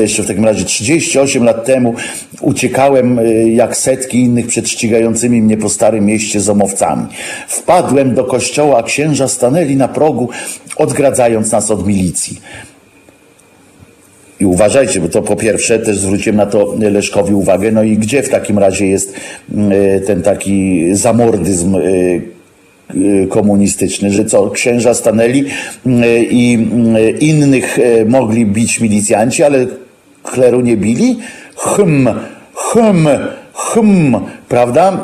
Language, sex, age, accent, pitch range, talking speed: Polish, male, 50-69, native, 105-140 Hz, 120 wpm